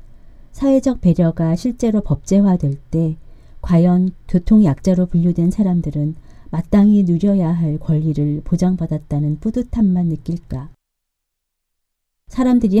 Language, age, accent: Korean, 40-59, native